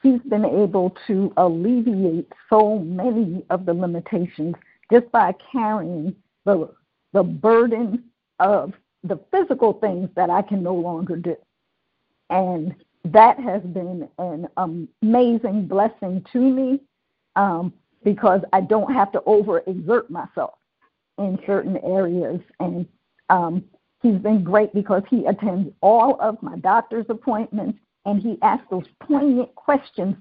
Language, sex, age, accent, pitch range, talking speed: English, female, 50-69, American, 185-245 Hz, 130 wpm